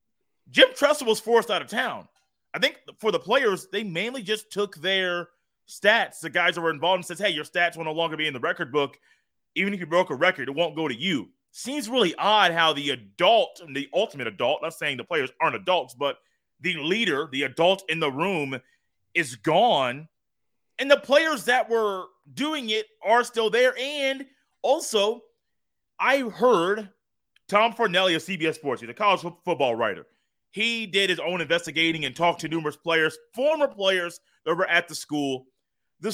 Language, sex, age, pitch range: English, male, 30-49, 165-220 Hz